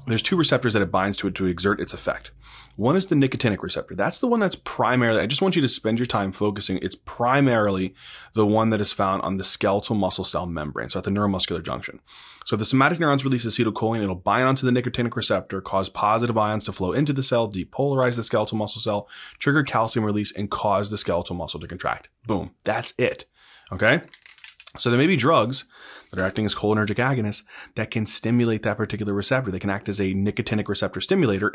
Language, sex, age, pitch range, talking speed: English, male, 20-39, 100-125 Hz, 220 wpm